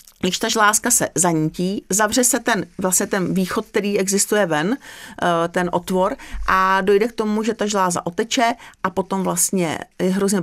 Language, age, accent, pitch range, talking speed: Czech, 40-59, native, 180-220 Hz, 165 wpm